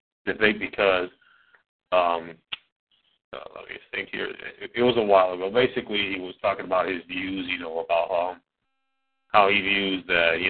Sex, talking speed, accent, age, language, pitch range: male, 185 wpm, American, 40-59, English, 95-115 Hz